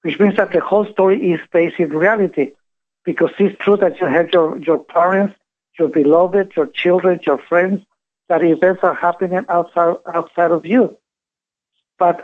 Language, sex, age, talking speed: English, male, 60-79, 165 wpm